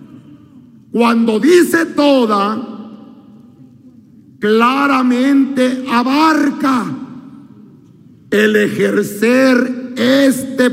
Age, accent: 50-69, Mexican